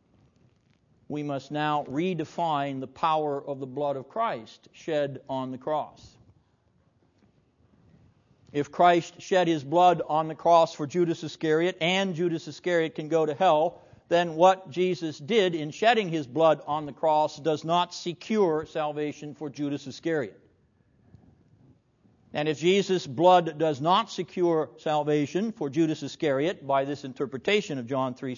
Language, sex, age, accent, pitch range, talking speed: English, male, 60-79, American, 145-175 Hz, 145 wpm